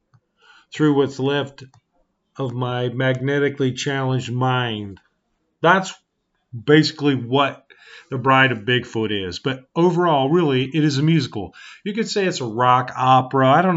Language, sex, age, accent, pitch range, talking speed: English, male, 40-59, American, 125-155 Hz, 140 wpm